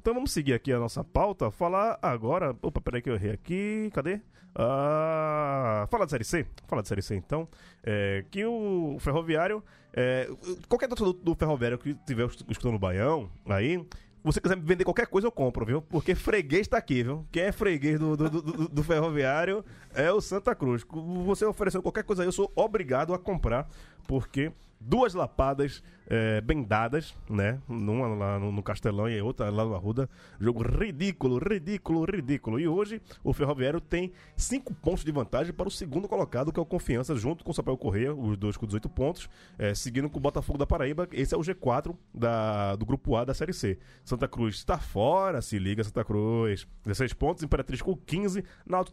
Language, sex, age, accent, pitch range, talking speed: Portuguese, male, 20-39, Brazilian, 120-180 Hz, 195 wpm